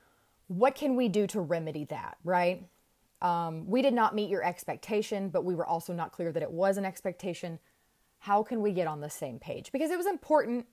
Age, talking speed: 30-49, 215 wpm